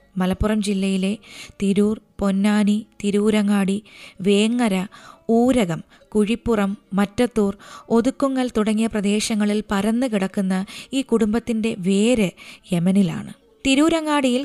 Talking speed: 75 wpm